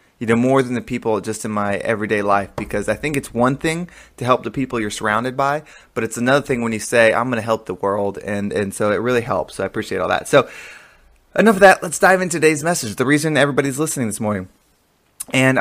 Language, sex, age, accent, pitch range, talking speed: English, male, 20-39, American, 115-145 Hz, 245 wpm